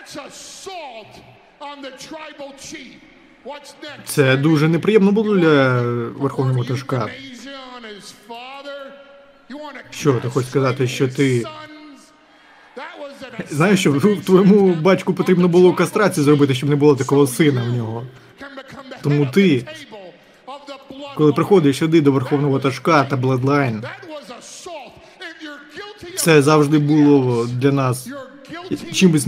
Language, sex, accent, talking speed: Ukrainian, male, native, 90 wpm